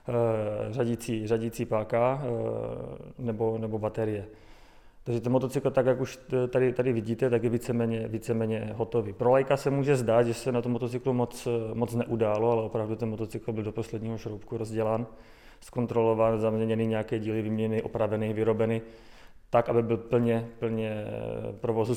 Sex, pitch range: male, 110-125 Hz